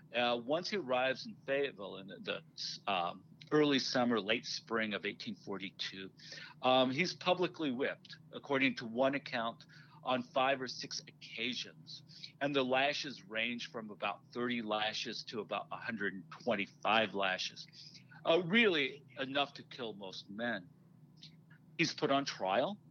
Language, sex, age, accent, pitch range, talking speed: English, male, 50-69, American, 120-160 Hz, 135 wpm